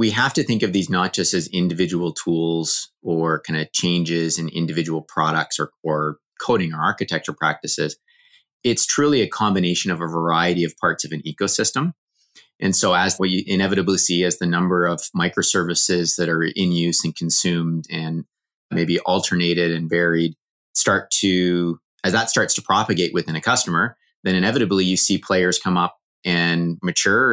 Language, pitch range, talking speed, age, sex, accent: English, 85-95 Hz, 170 wpm, 30-49, male, American